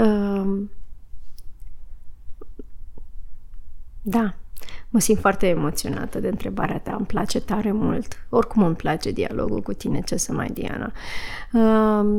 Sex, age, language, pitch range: female, 30-49, Romanian, 205-240 Hz